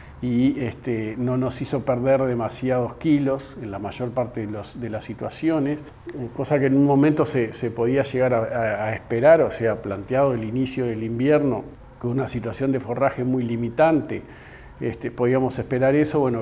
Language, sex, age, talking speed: Spanish, male, 50-69, 180 wpm